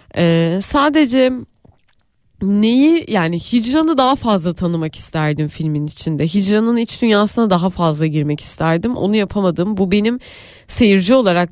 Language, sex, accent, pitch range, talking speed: Turkish, female, native, 170-235 Hz, 125 wpm